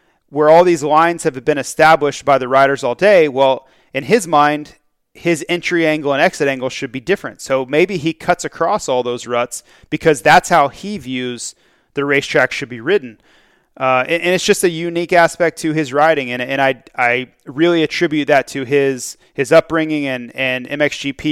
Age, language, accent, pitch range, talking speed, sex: 30-49, English, American, 130-160 Hz, 190 wpm, male